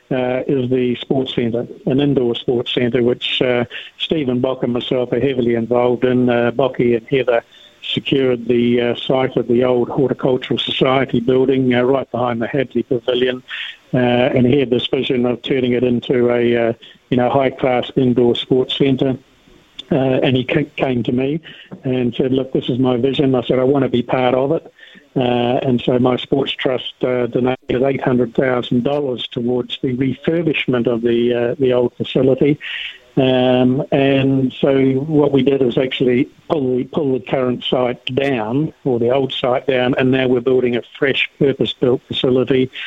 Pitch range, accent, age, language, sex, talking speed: 125-135 Hz, British, 60-79, English, male, 175 wpm